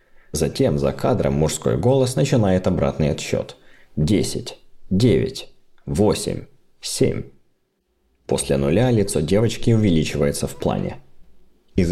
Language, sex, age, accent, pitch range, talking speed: Russian, male, 30-49, native, 80-125 Hz, 100 wpm